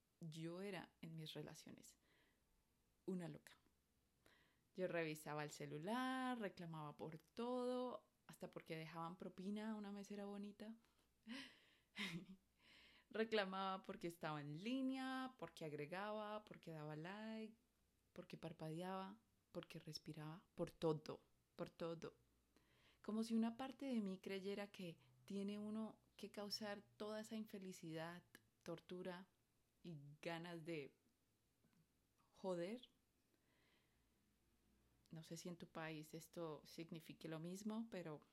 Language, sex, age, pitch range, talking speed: Spanish, female, 30-49, 160-210 Hz, 110 wpm